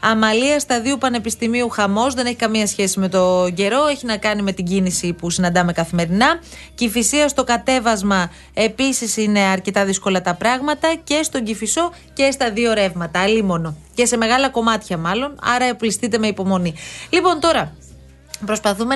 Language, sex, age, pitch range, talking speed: Greek, female, 30-49, 195-255 Hz, 160 wpm